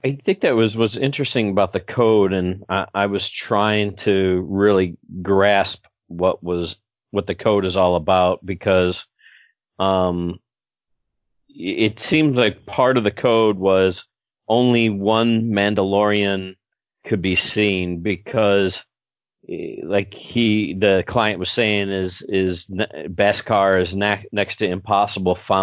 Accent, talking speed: American, 130 wpm